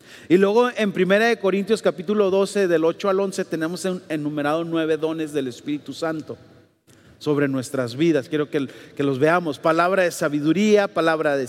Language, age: Spanish, 40-59